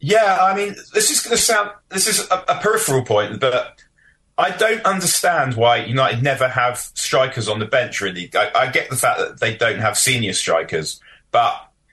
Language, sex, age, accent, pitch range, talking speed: English, male, 30-49, British, 120-145 Hz, 175 wpm